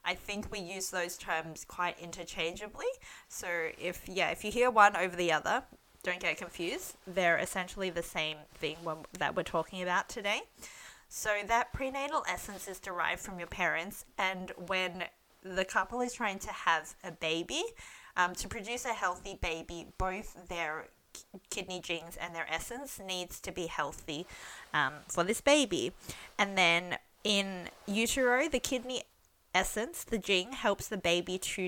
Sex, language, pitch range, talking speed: female, English, 175-210 Hz, 160 wpm